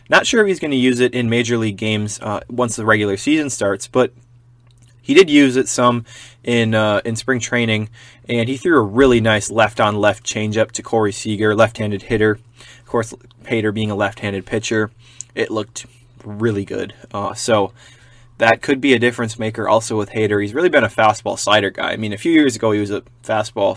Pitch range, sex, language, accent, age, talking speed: 110-120 Hz, male, English, American, 20-39, 205 wpm